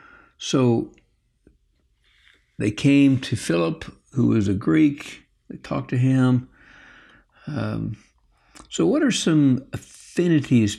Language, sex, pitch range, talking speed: English, male, 105-130 Hz, 105 wpm